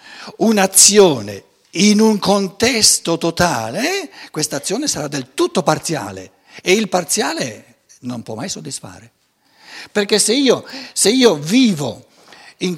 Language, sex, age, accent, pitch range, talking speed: Italian, male, 60-79, native, 135-215 Hz, 115 wpm